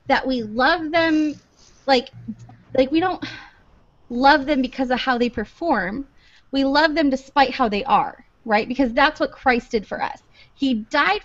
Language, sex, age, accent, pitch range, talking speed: English, female, 20-39, American, 235-305 Hz, 170 wpm